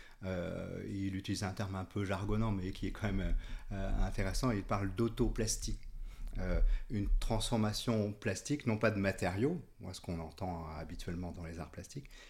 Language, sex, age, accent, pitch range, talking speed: French, male, 40-59, French, 95-110 Hz, 165 wpm